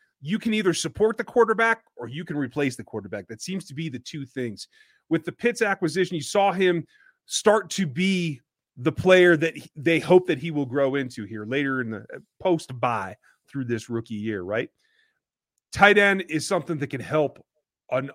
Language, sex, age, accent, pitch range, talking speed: English, male, 30-49, American, 135-185 Hz, 190 wpm